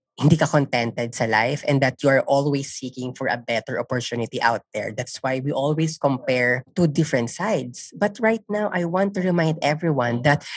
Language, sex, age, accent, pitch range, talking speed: Filipino, female, 20-39, native, 130-185 Hz, 195 wpm